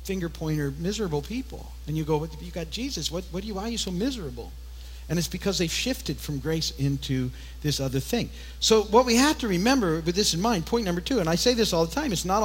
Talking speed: 245 wpm